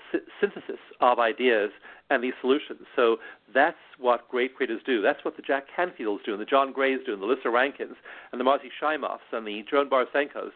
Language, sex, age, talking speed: English, male, 50-69, 200 wpm